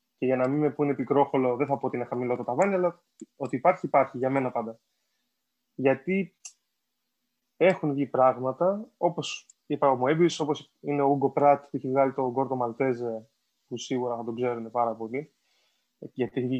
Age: 20-39